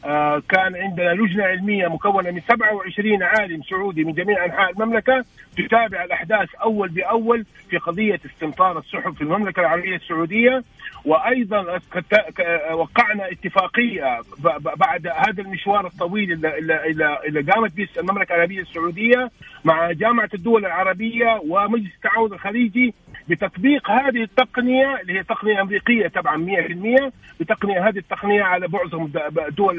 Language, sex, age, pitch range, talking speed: Arabic, male, 50-69, 170-215 Hz, 125 wpm